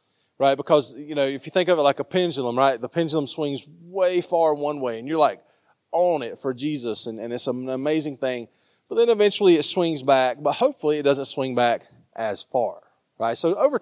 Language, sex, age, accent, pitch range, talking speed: English, male, 30-49, American, 115-150 Hz, 215 wpm